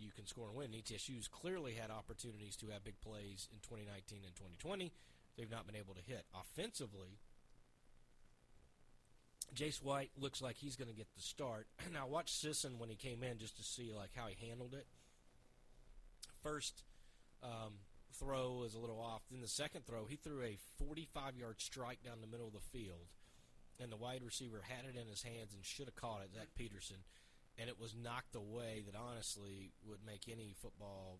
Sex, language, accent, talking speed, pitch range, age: male, English, American, 190 wpm, 105-130 Hz, 30-49